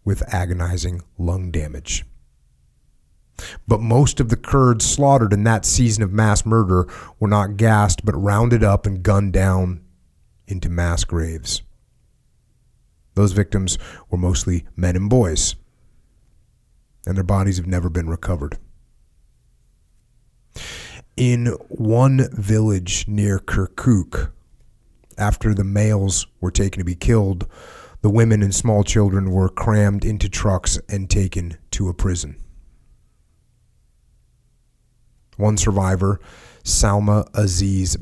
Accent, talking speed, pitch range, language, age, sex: American, 115 wpm, 90-105 Hz, English, 30-49, male